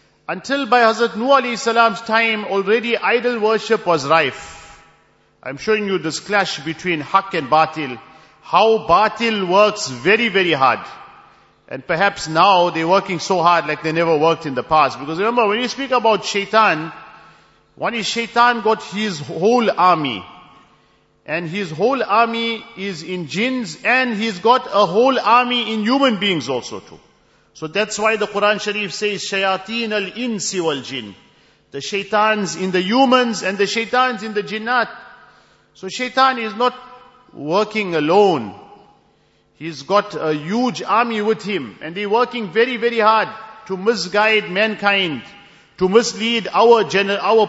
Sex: male